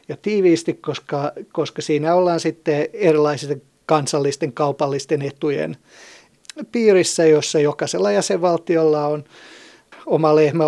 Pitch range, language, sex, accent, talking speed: 145-160 Hz, Finnish, male, native, 100 wpm